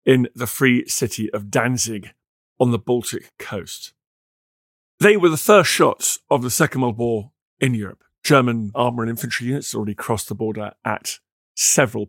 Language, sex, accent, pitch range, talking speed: English, male, British, 110-140 Hz, 165 wpm